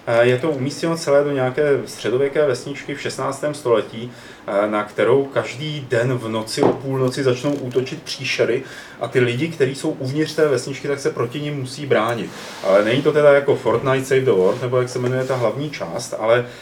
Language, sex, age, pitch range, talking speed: Czech, male, 30-49, 120-145 Hz, 190 wpm